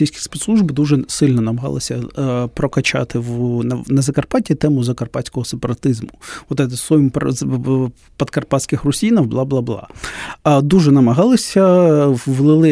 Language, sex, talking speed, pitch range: Ukrainian, male, 105 wpm, 130-160 Hz